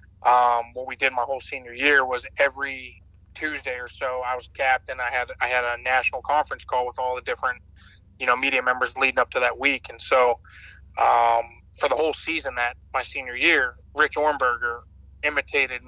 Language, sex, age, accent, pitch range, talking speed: English, male, 20-39, American, 95-135 Hz, 195 wpm